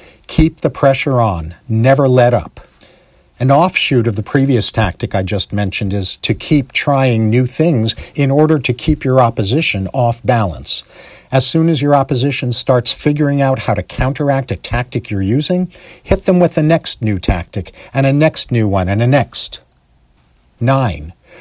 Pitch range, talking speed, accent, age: 105-150 Hz, 170 wpm, American, 50-69